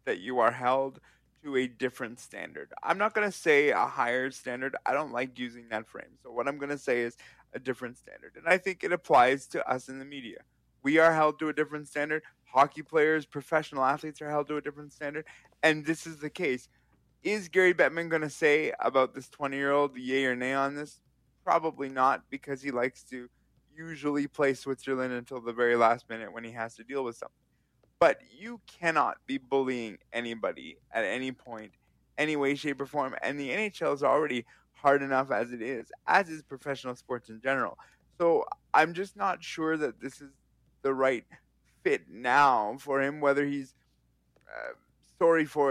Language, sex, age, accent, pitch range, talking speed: English, male, 20-39, American, 125-155 Hz, 195 wpm